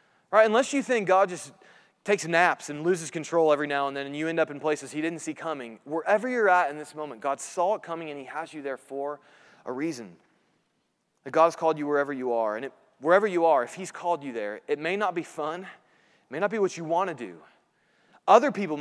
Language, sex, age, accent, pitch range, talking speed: English, male, 30-49, American, 150-195 Hz, 250 wpm